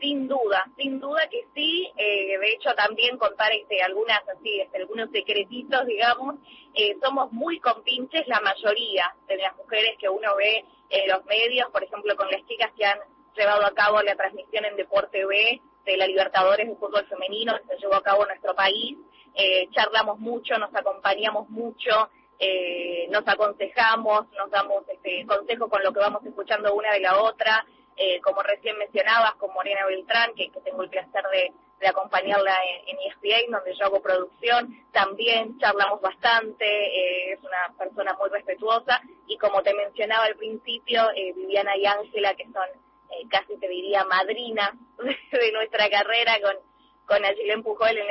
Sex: female